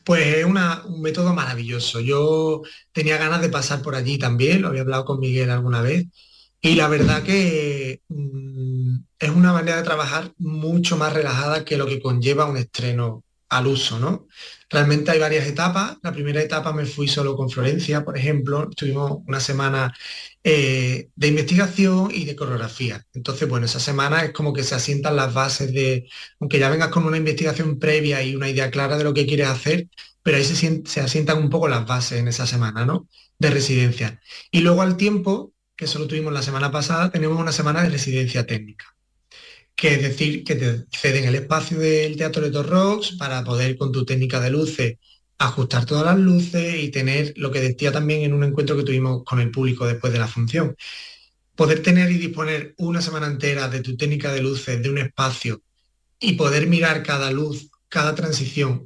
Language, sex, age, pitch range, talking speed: Spanish, male, 30-49, 130-155 Hz, 190 wpm